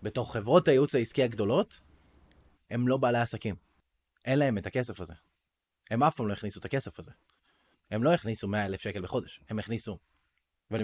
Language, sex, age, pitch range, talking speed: Hebrew, male, 20-39, 105-140 Hz, 170 wpm